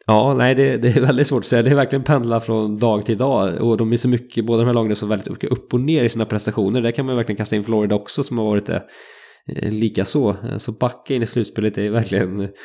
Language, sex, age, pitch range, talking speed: English, male, 20-39, 110-130 Hz, 255 wpm